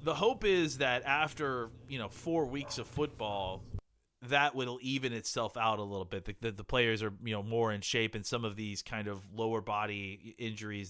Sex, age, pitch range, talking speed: male, 30-49, 115-145 Hz, 210 wpm